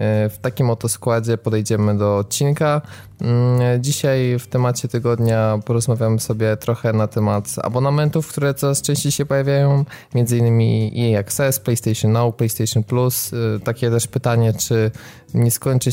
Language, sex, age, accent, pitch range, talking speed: Polish, male, 20-39, native, 110-135 Hz, 130 wpm